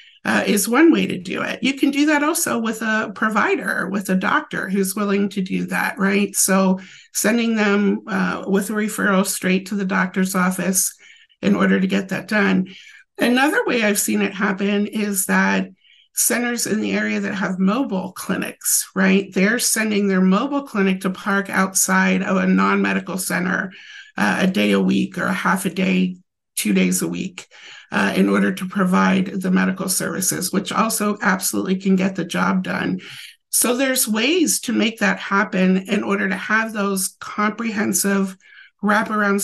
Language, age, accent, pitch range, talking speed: English, 50-69, American, 185-215 Hz, 175 wpm